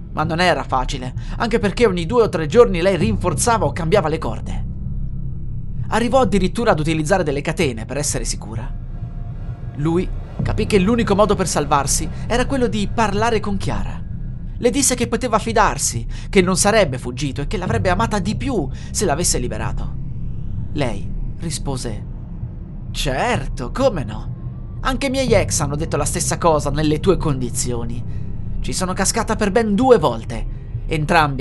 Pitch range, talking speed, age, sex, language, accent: 120-180 Hz, 155 wpm, 30-49, male, Italian, native